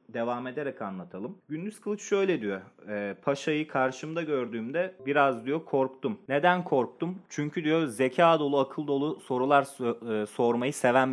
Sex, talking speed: male, 130 wpm